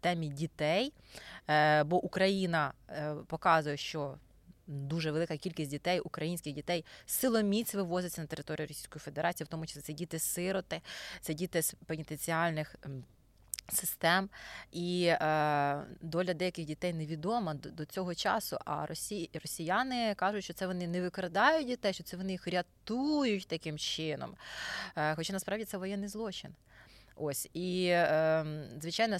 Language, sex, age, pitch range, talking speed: Ukrainian, female, 20-39, 155-190 Hz, 120 wpm